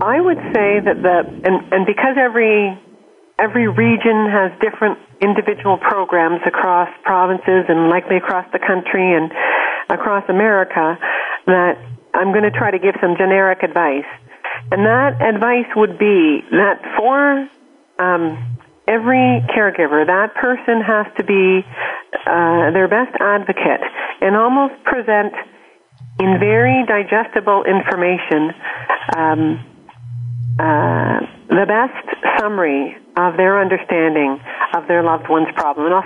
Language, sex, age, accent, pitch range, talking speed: English, female, 40-59, American, 170-210 Hz, 125 wpm